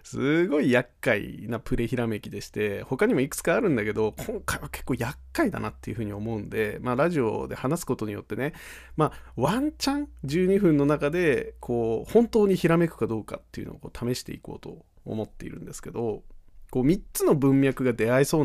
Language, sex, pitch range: Japanese, male, 110-165 Hz